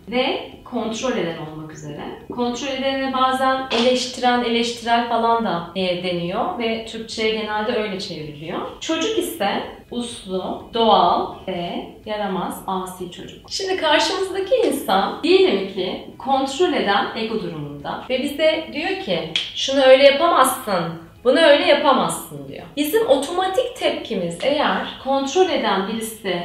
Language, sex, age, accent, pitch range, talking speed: Turkish, female, 30-49, native, 200-285 Hz, 120 wpm